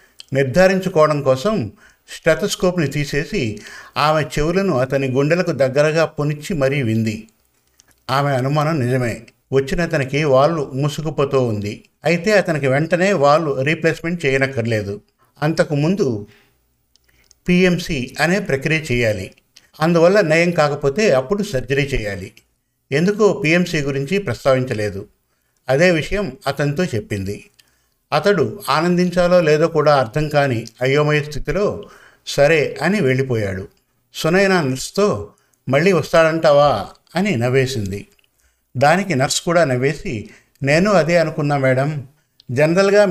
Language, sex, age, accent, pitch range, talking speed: Telugu, male, 50-69, native, 130-165 Hz, 95 wpm